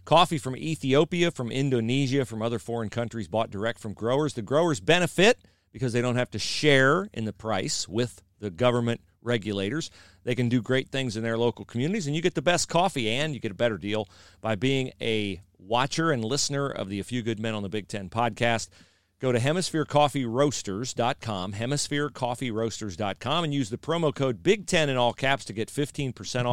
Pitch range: 110-145 Hz